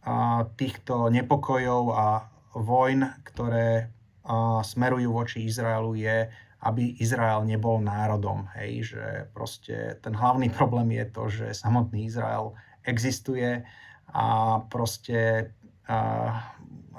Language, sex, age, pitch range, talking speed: Slovak, male, 30-49, 110-125 Hz, 100 wpm